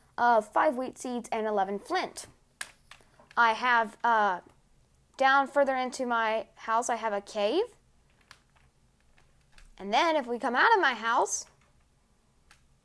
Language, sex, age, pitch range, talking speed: English, female, 20-39, 210-275 Hz, 130 wpm